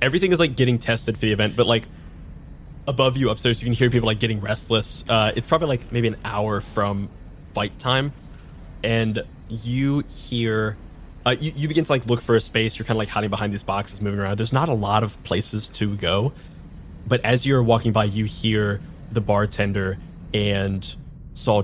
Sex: male